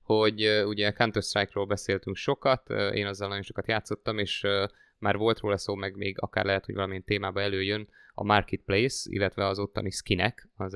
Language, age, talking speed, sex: Hungarian, 20-39, 175 wpm, male